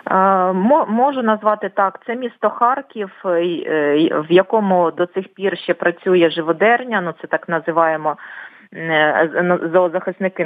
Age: 30-49